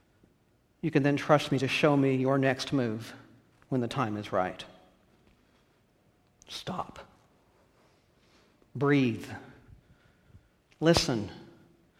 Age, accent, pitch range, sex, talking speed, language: 50-69, American, 125-165 Hz, male, 95 wpm, English